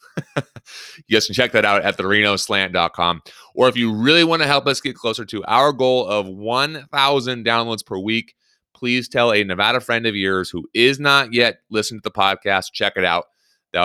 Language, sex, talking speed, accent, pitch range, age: English, male, 195 wpm, American, 95-125 Hz, 30-49